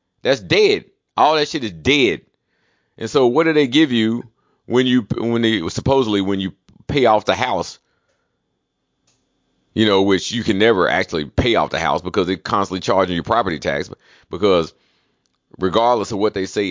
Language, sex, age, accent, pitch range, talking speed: English, male, 40-59, American, 95-125 Hz, 175 wpm